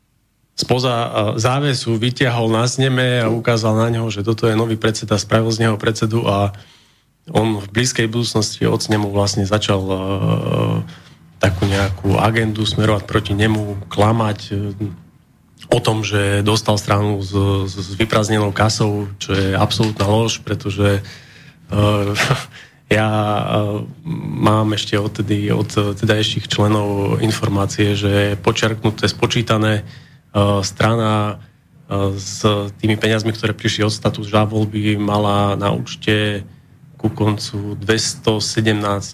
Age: 30-49